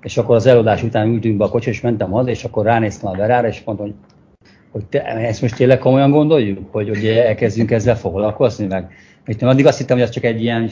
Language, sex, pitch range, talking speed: Hungarian, male, 100-115 Hz, 225 wpm